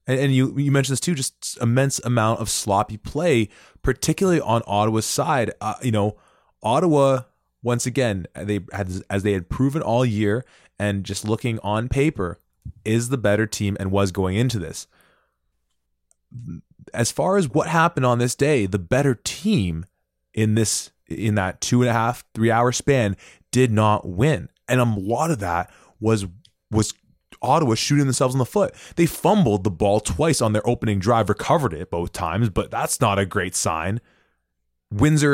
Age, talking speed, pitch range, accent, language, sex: 20-39, 175 wpm, 105-140 Hz, American, English, male